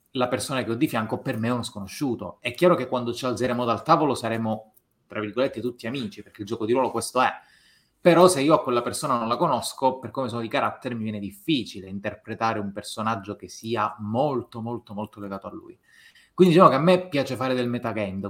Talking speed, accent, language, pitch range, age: 225 wpm, native, Italian, 105-130 Hz, 20-39